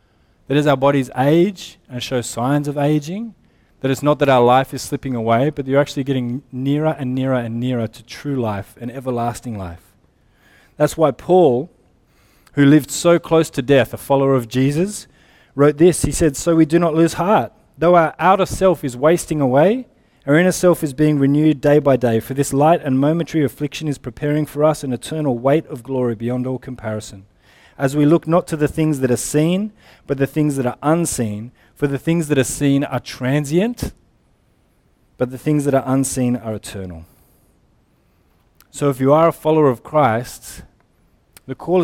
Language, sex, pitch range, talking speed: English, male, 125-155 Hz, 190 wpm